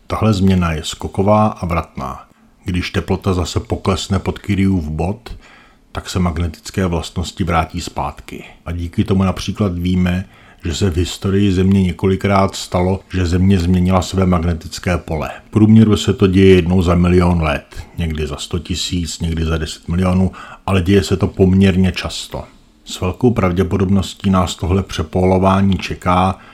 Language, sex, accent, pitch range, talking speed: Czech, male, native, 85-95 Hz, 150 wpm